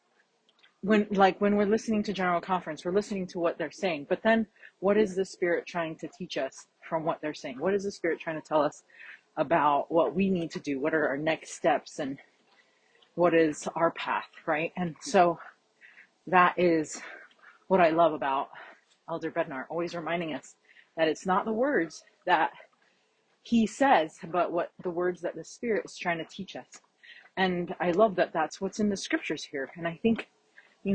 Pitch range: 165-205 Hz